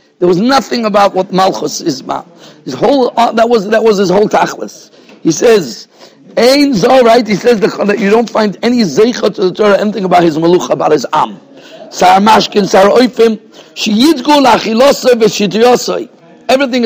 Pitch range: 180-235 Hz